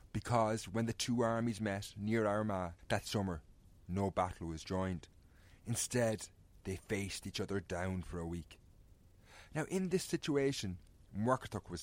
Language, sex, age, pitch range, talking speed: English, male, 30-49, 90-115 Hz, 145 wpm